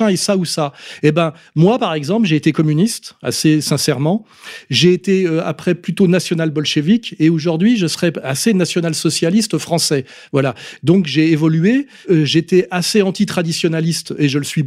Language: French